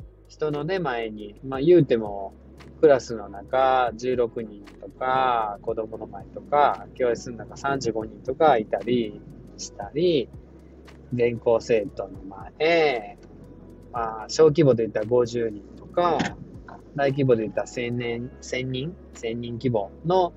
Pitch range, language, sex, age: 110-170 Hz, Japanese, male, 20-39